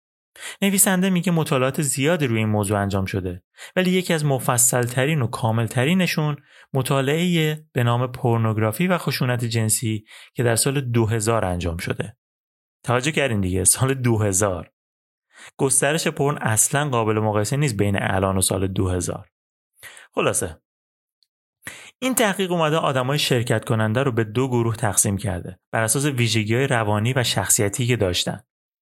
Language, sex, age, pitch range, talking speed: Persian, male, 30-49, 105-150 Hz, 135 wpm